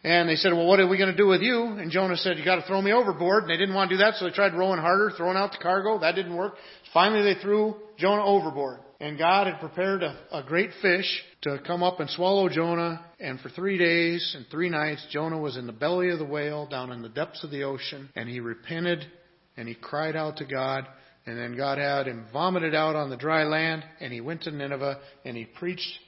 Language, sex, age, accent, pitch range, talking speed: English, male, 40-59, American, 135-185 Hz, 250 wpm